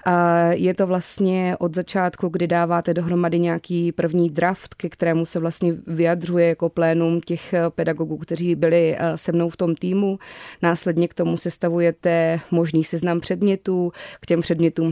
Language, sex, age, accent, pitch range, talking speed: Czech, female, 20-39, native, 165-175 Hz, 150 wpm